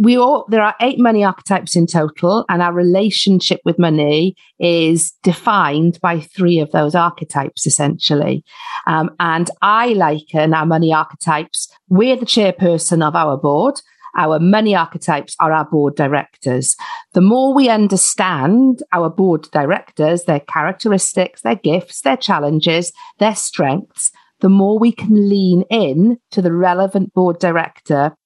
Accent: British